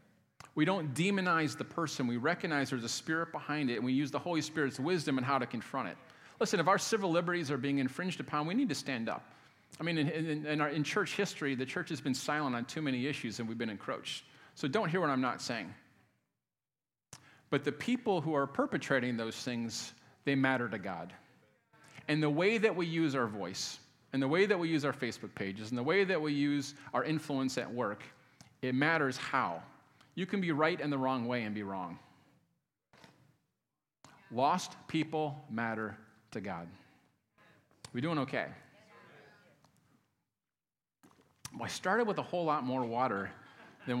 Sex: male